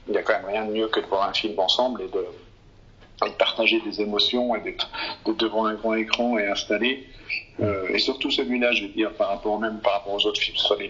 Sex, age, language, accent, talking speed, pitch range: male, 50-69, French, French, 260 wpm, 105-130 Hz